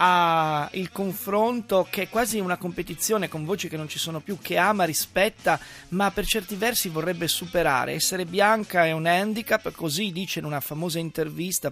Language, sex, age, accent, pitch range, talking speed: Italian, male, 30-49, native, 165-200 Hz, 180 wpm